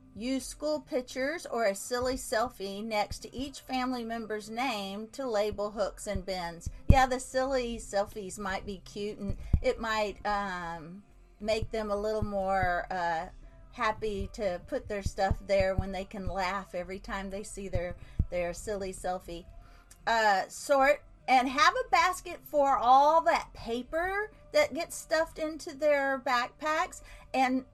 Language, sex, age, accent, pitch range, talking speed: English, female, 40-59, American, 205-275 Hz, 150 wpm